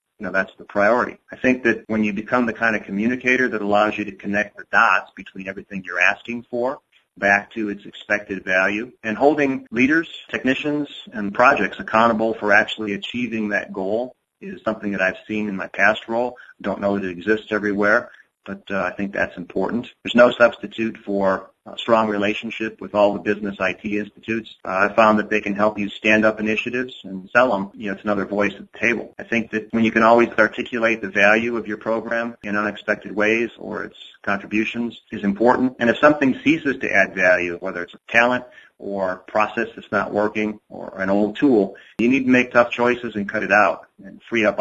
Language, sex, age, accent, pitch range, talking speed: English, male, 40-59, American, 100-115 Hz, 210 wpm